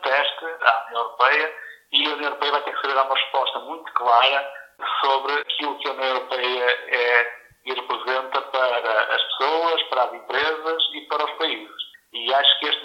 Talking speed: 170 wpm